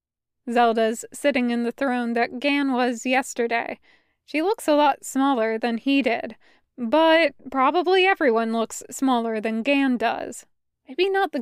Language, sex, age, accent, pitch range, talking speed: English, female, 20-39, American, 230-280 Hz, 145 wpm